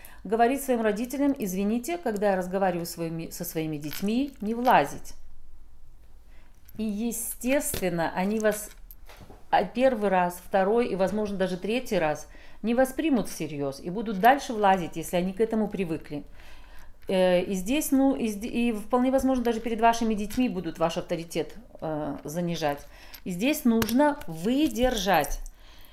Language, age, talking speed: Russian, 40-59, 125 wpm